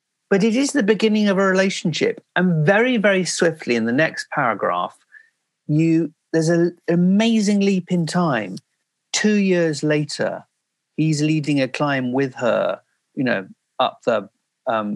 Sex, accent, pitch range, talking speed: male, British, 145-195 Hz, 150 wpm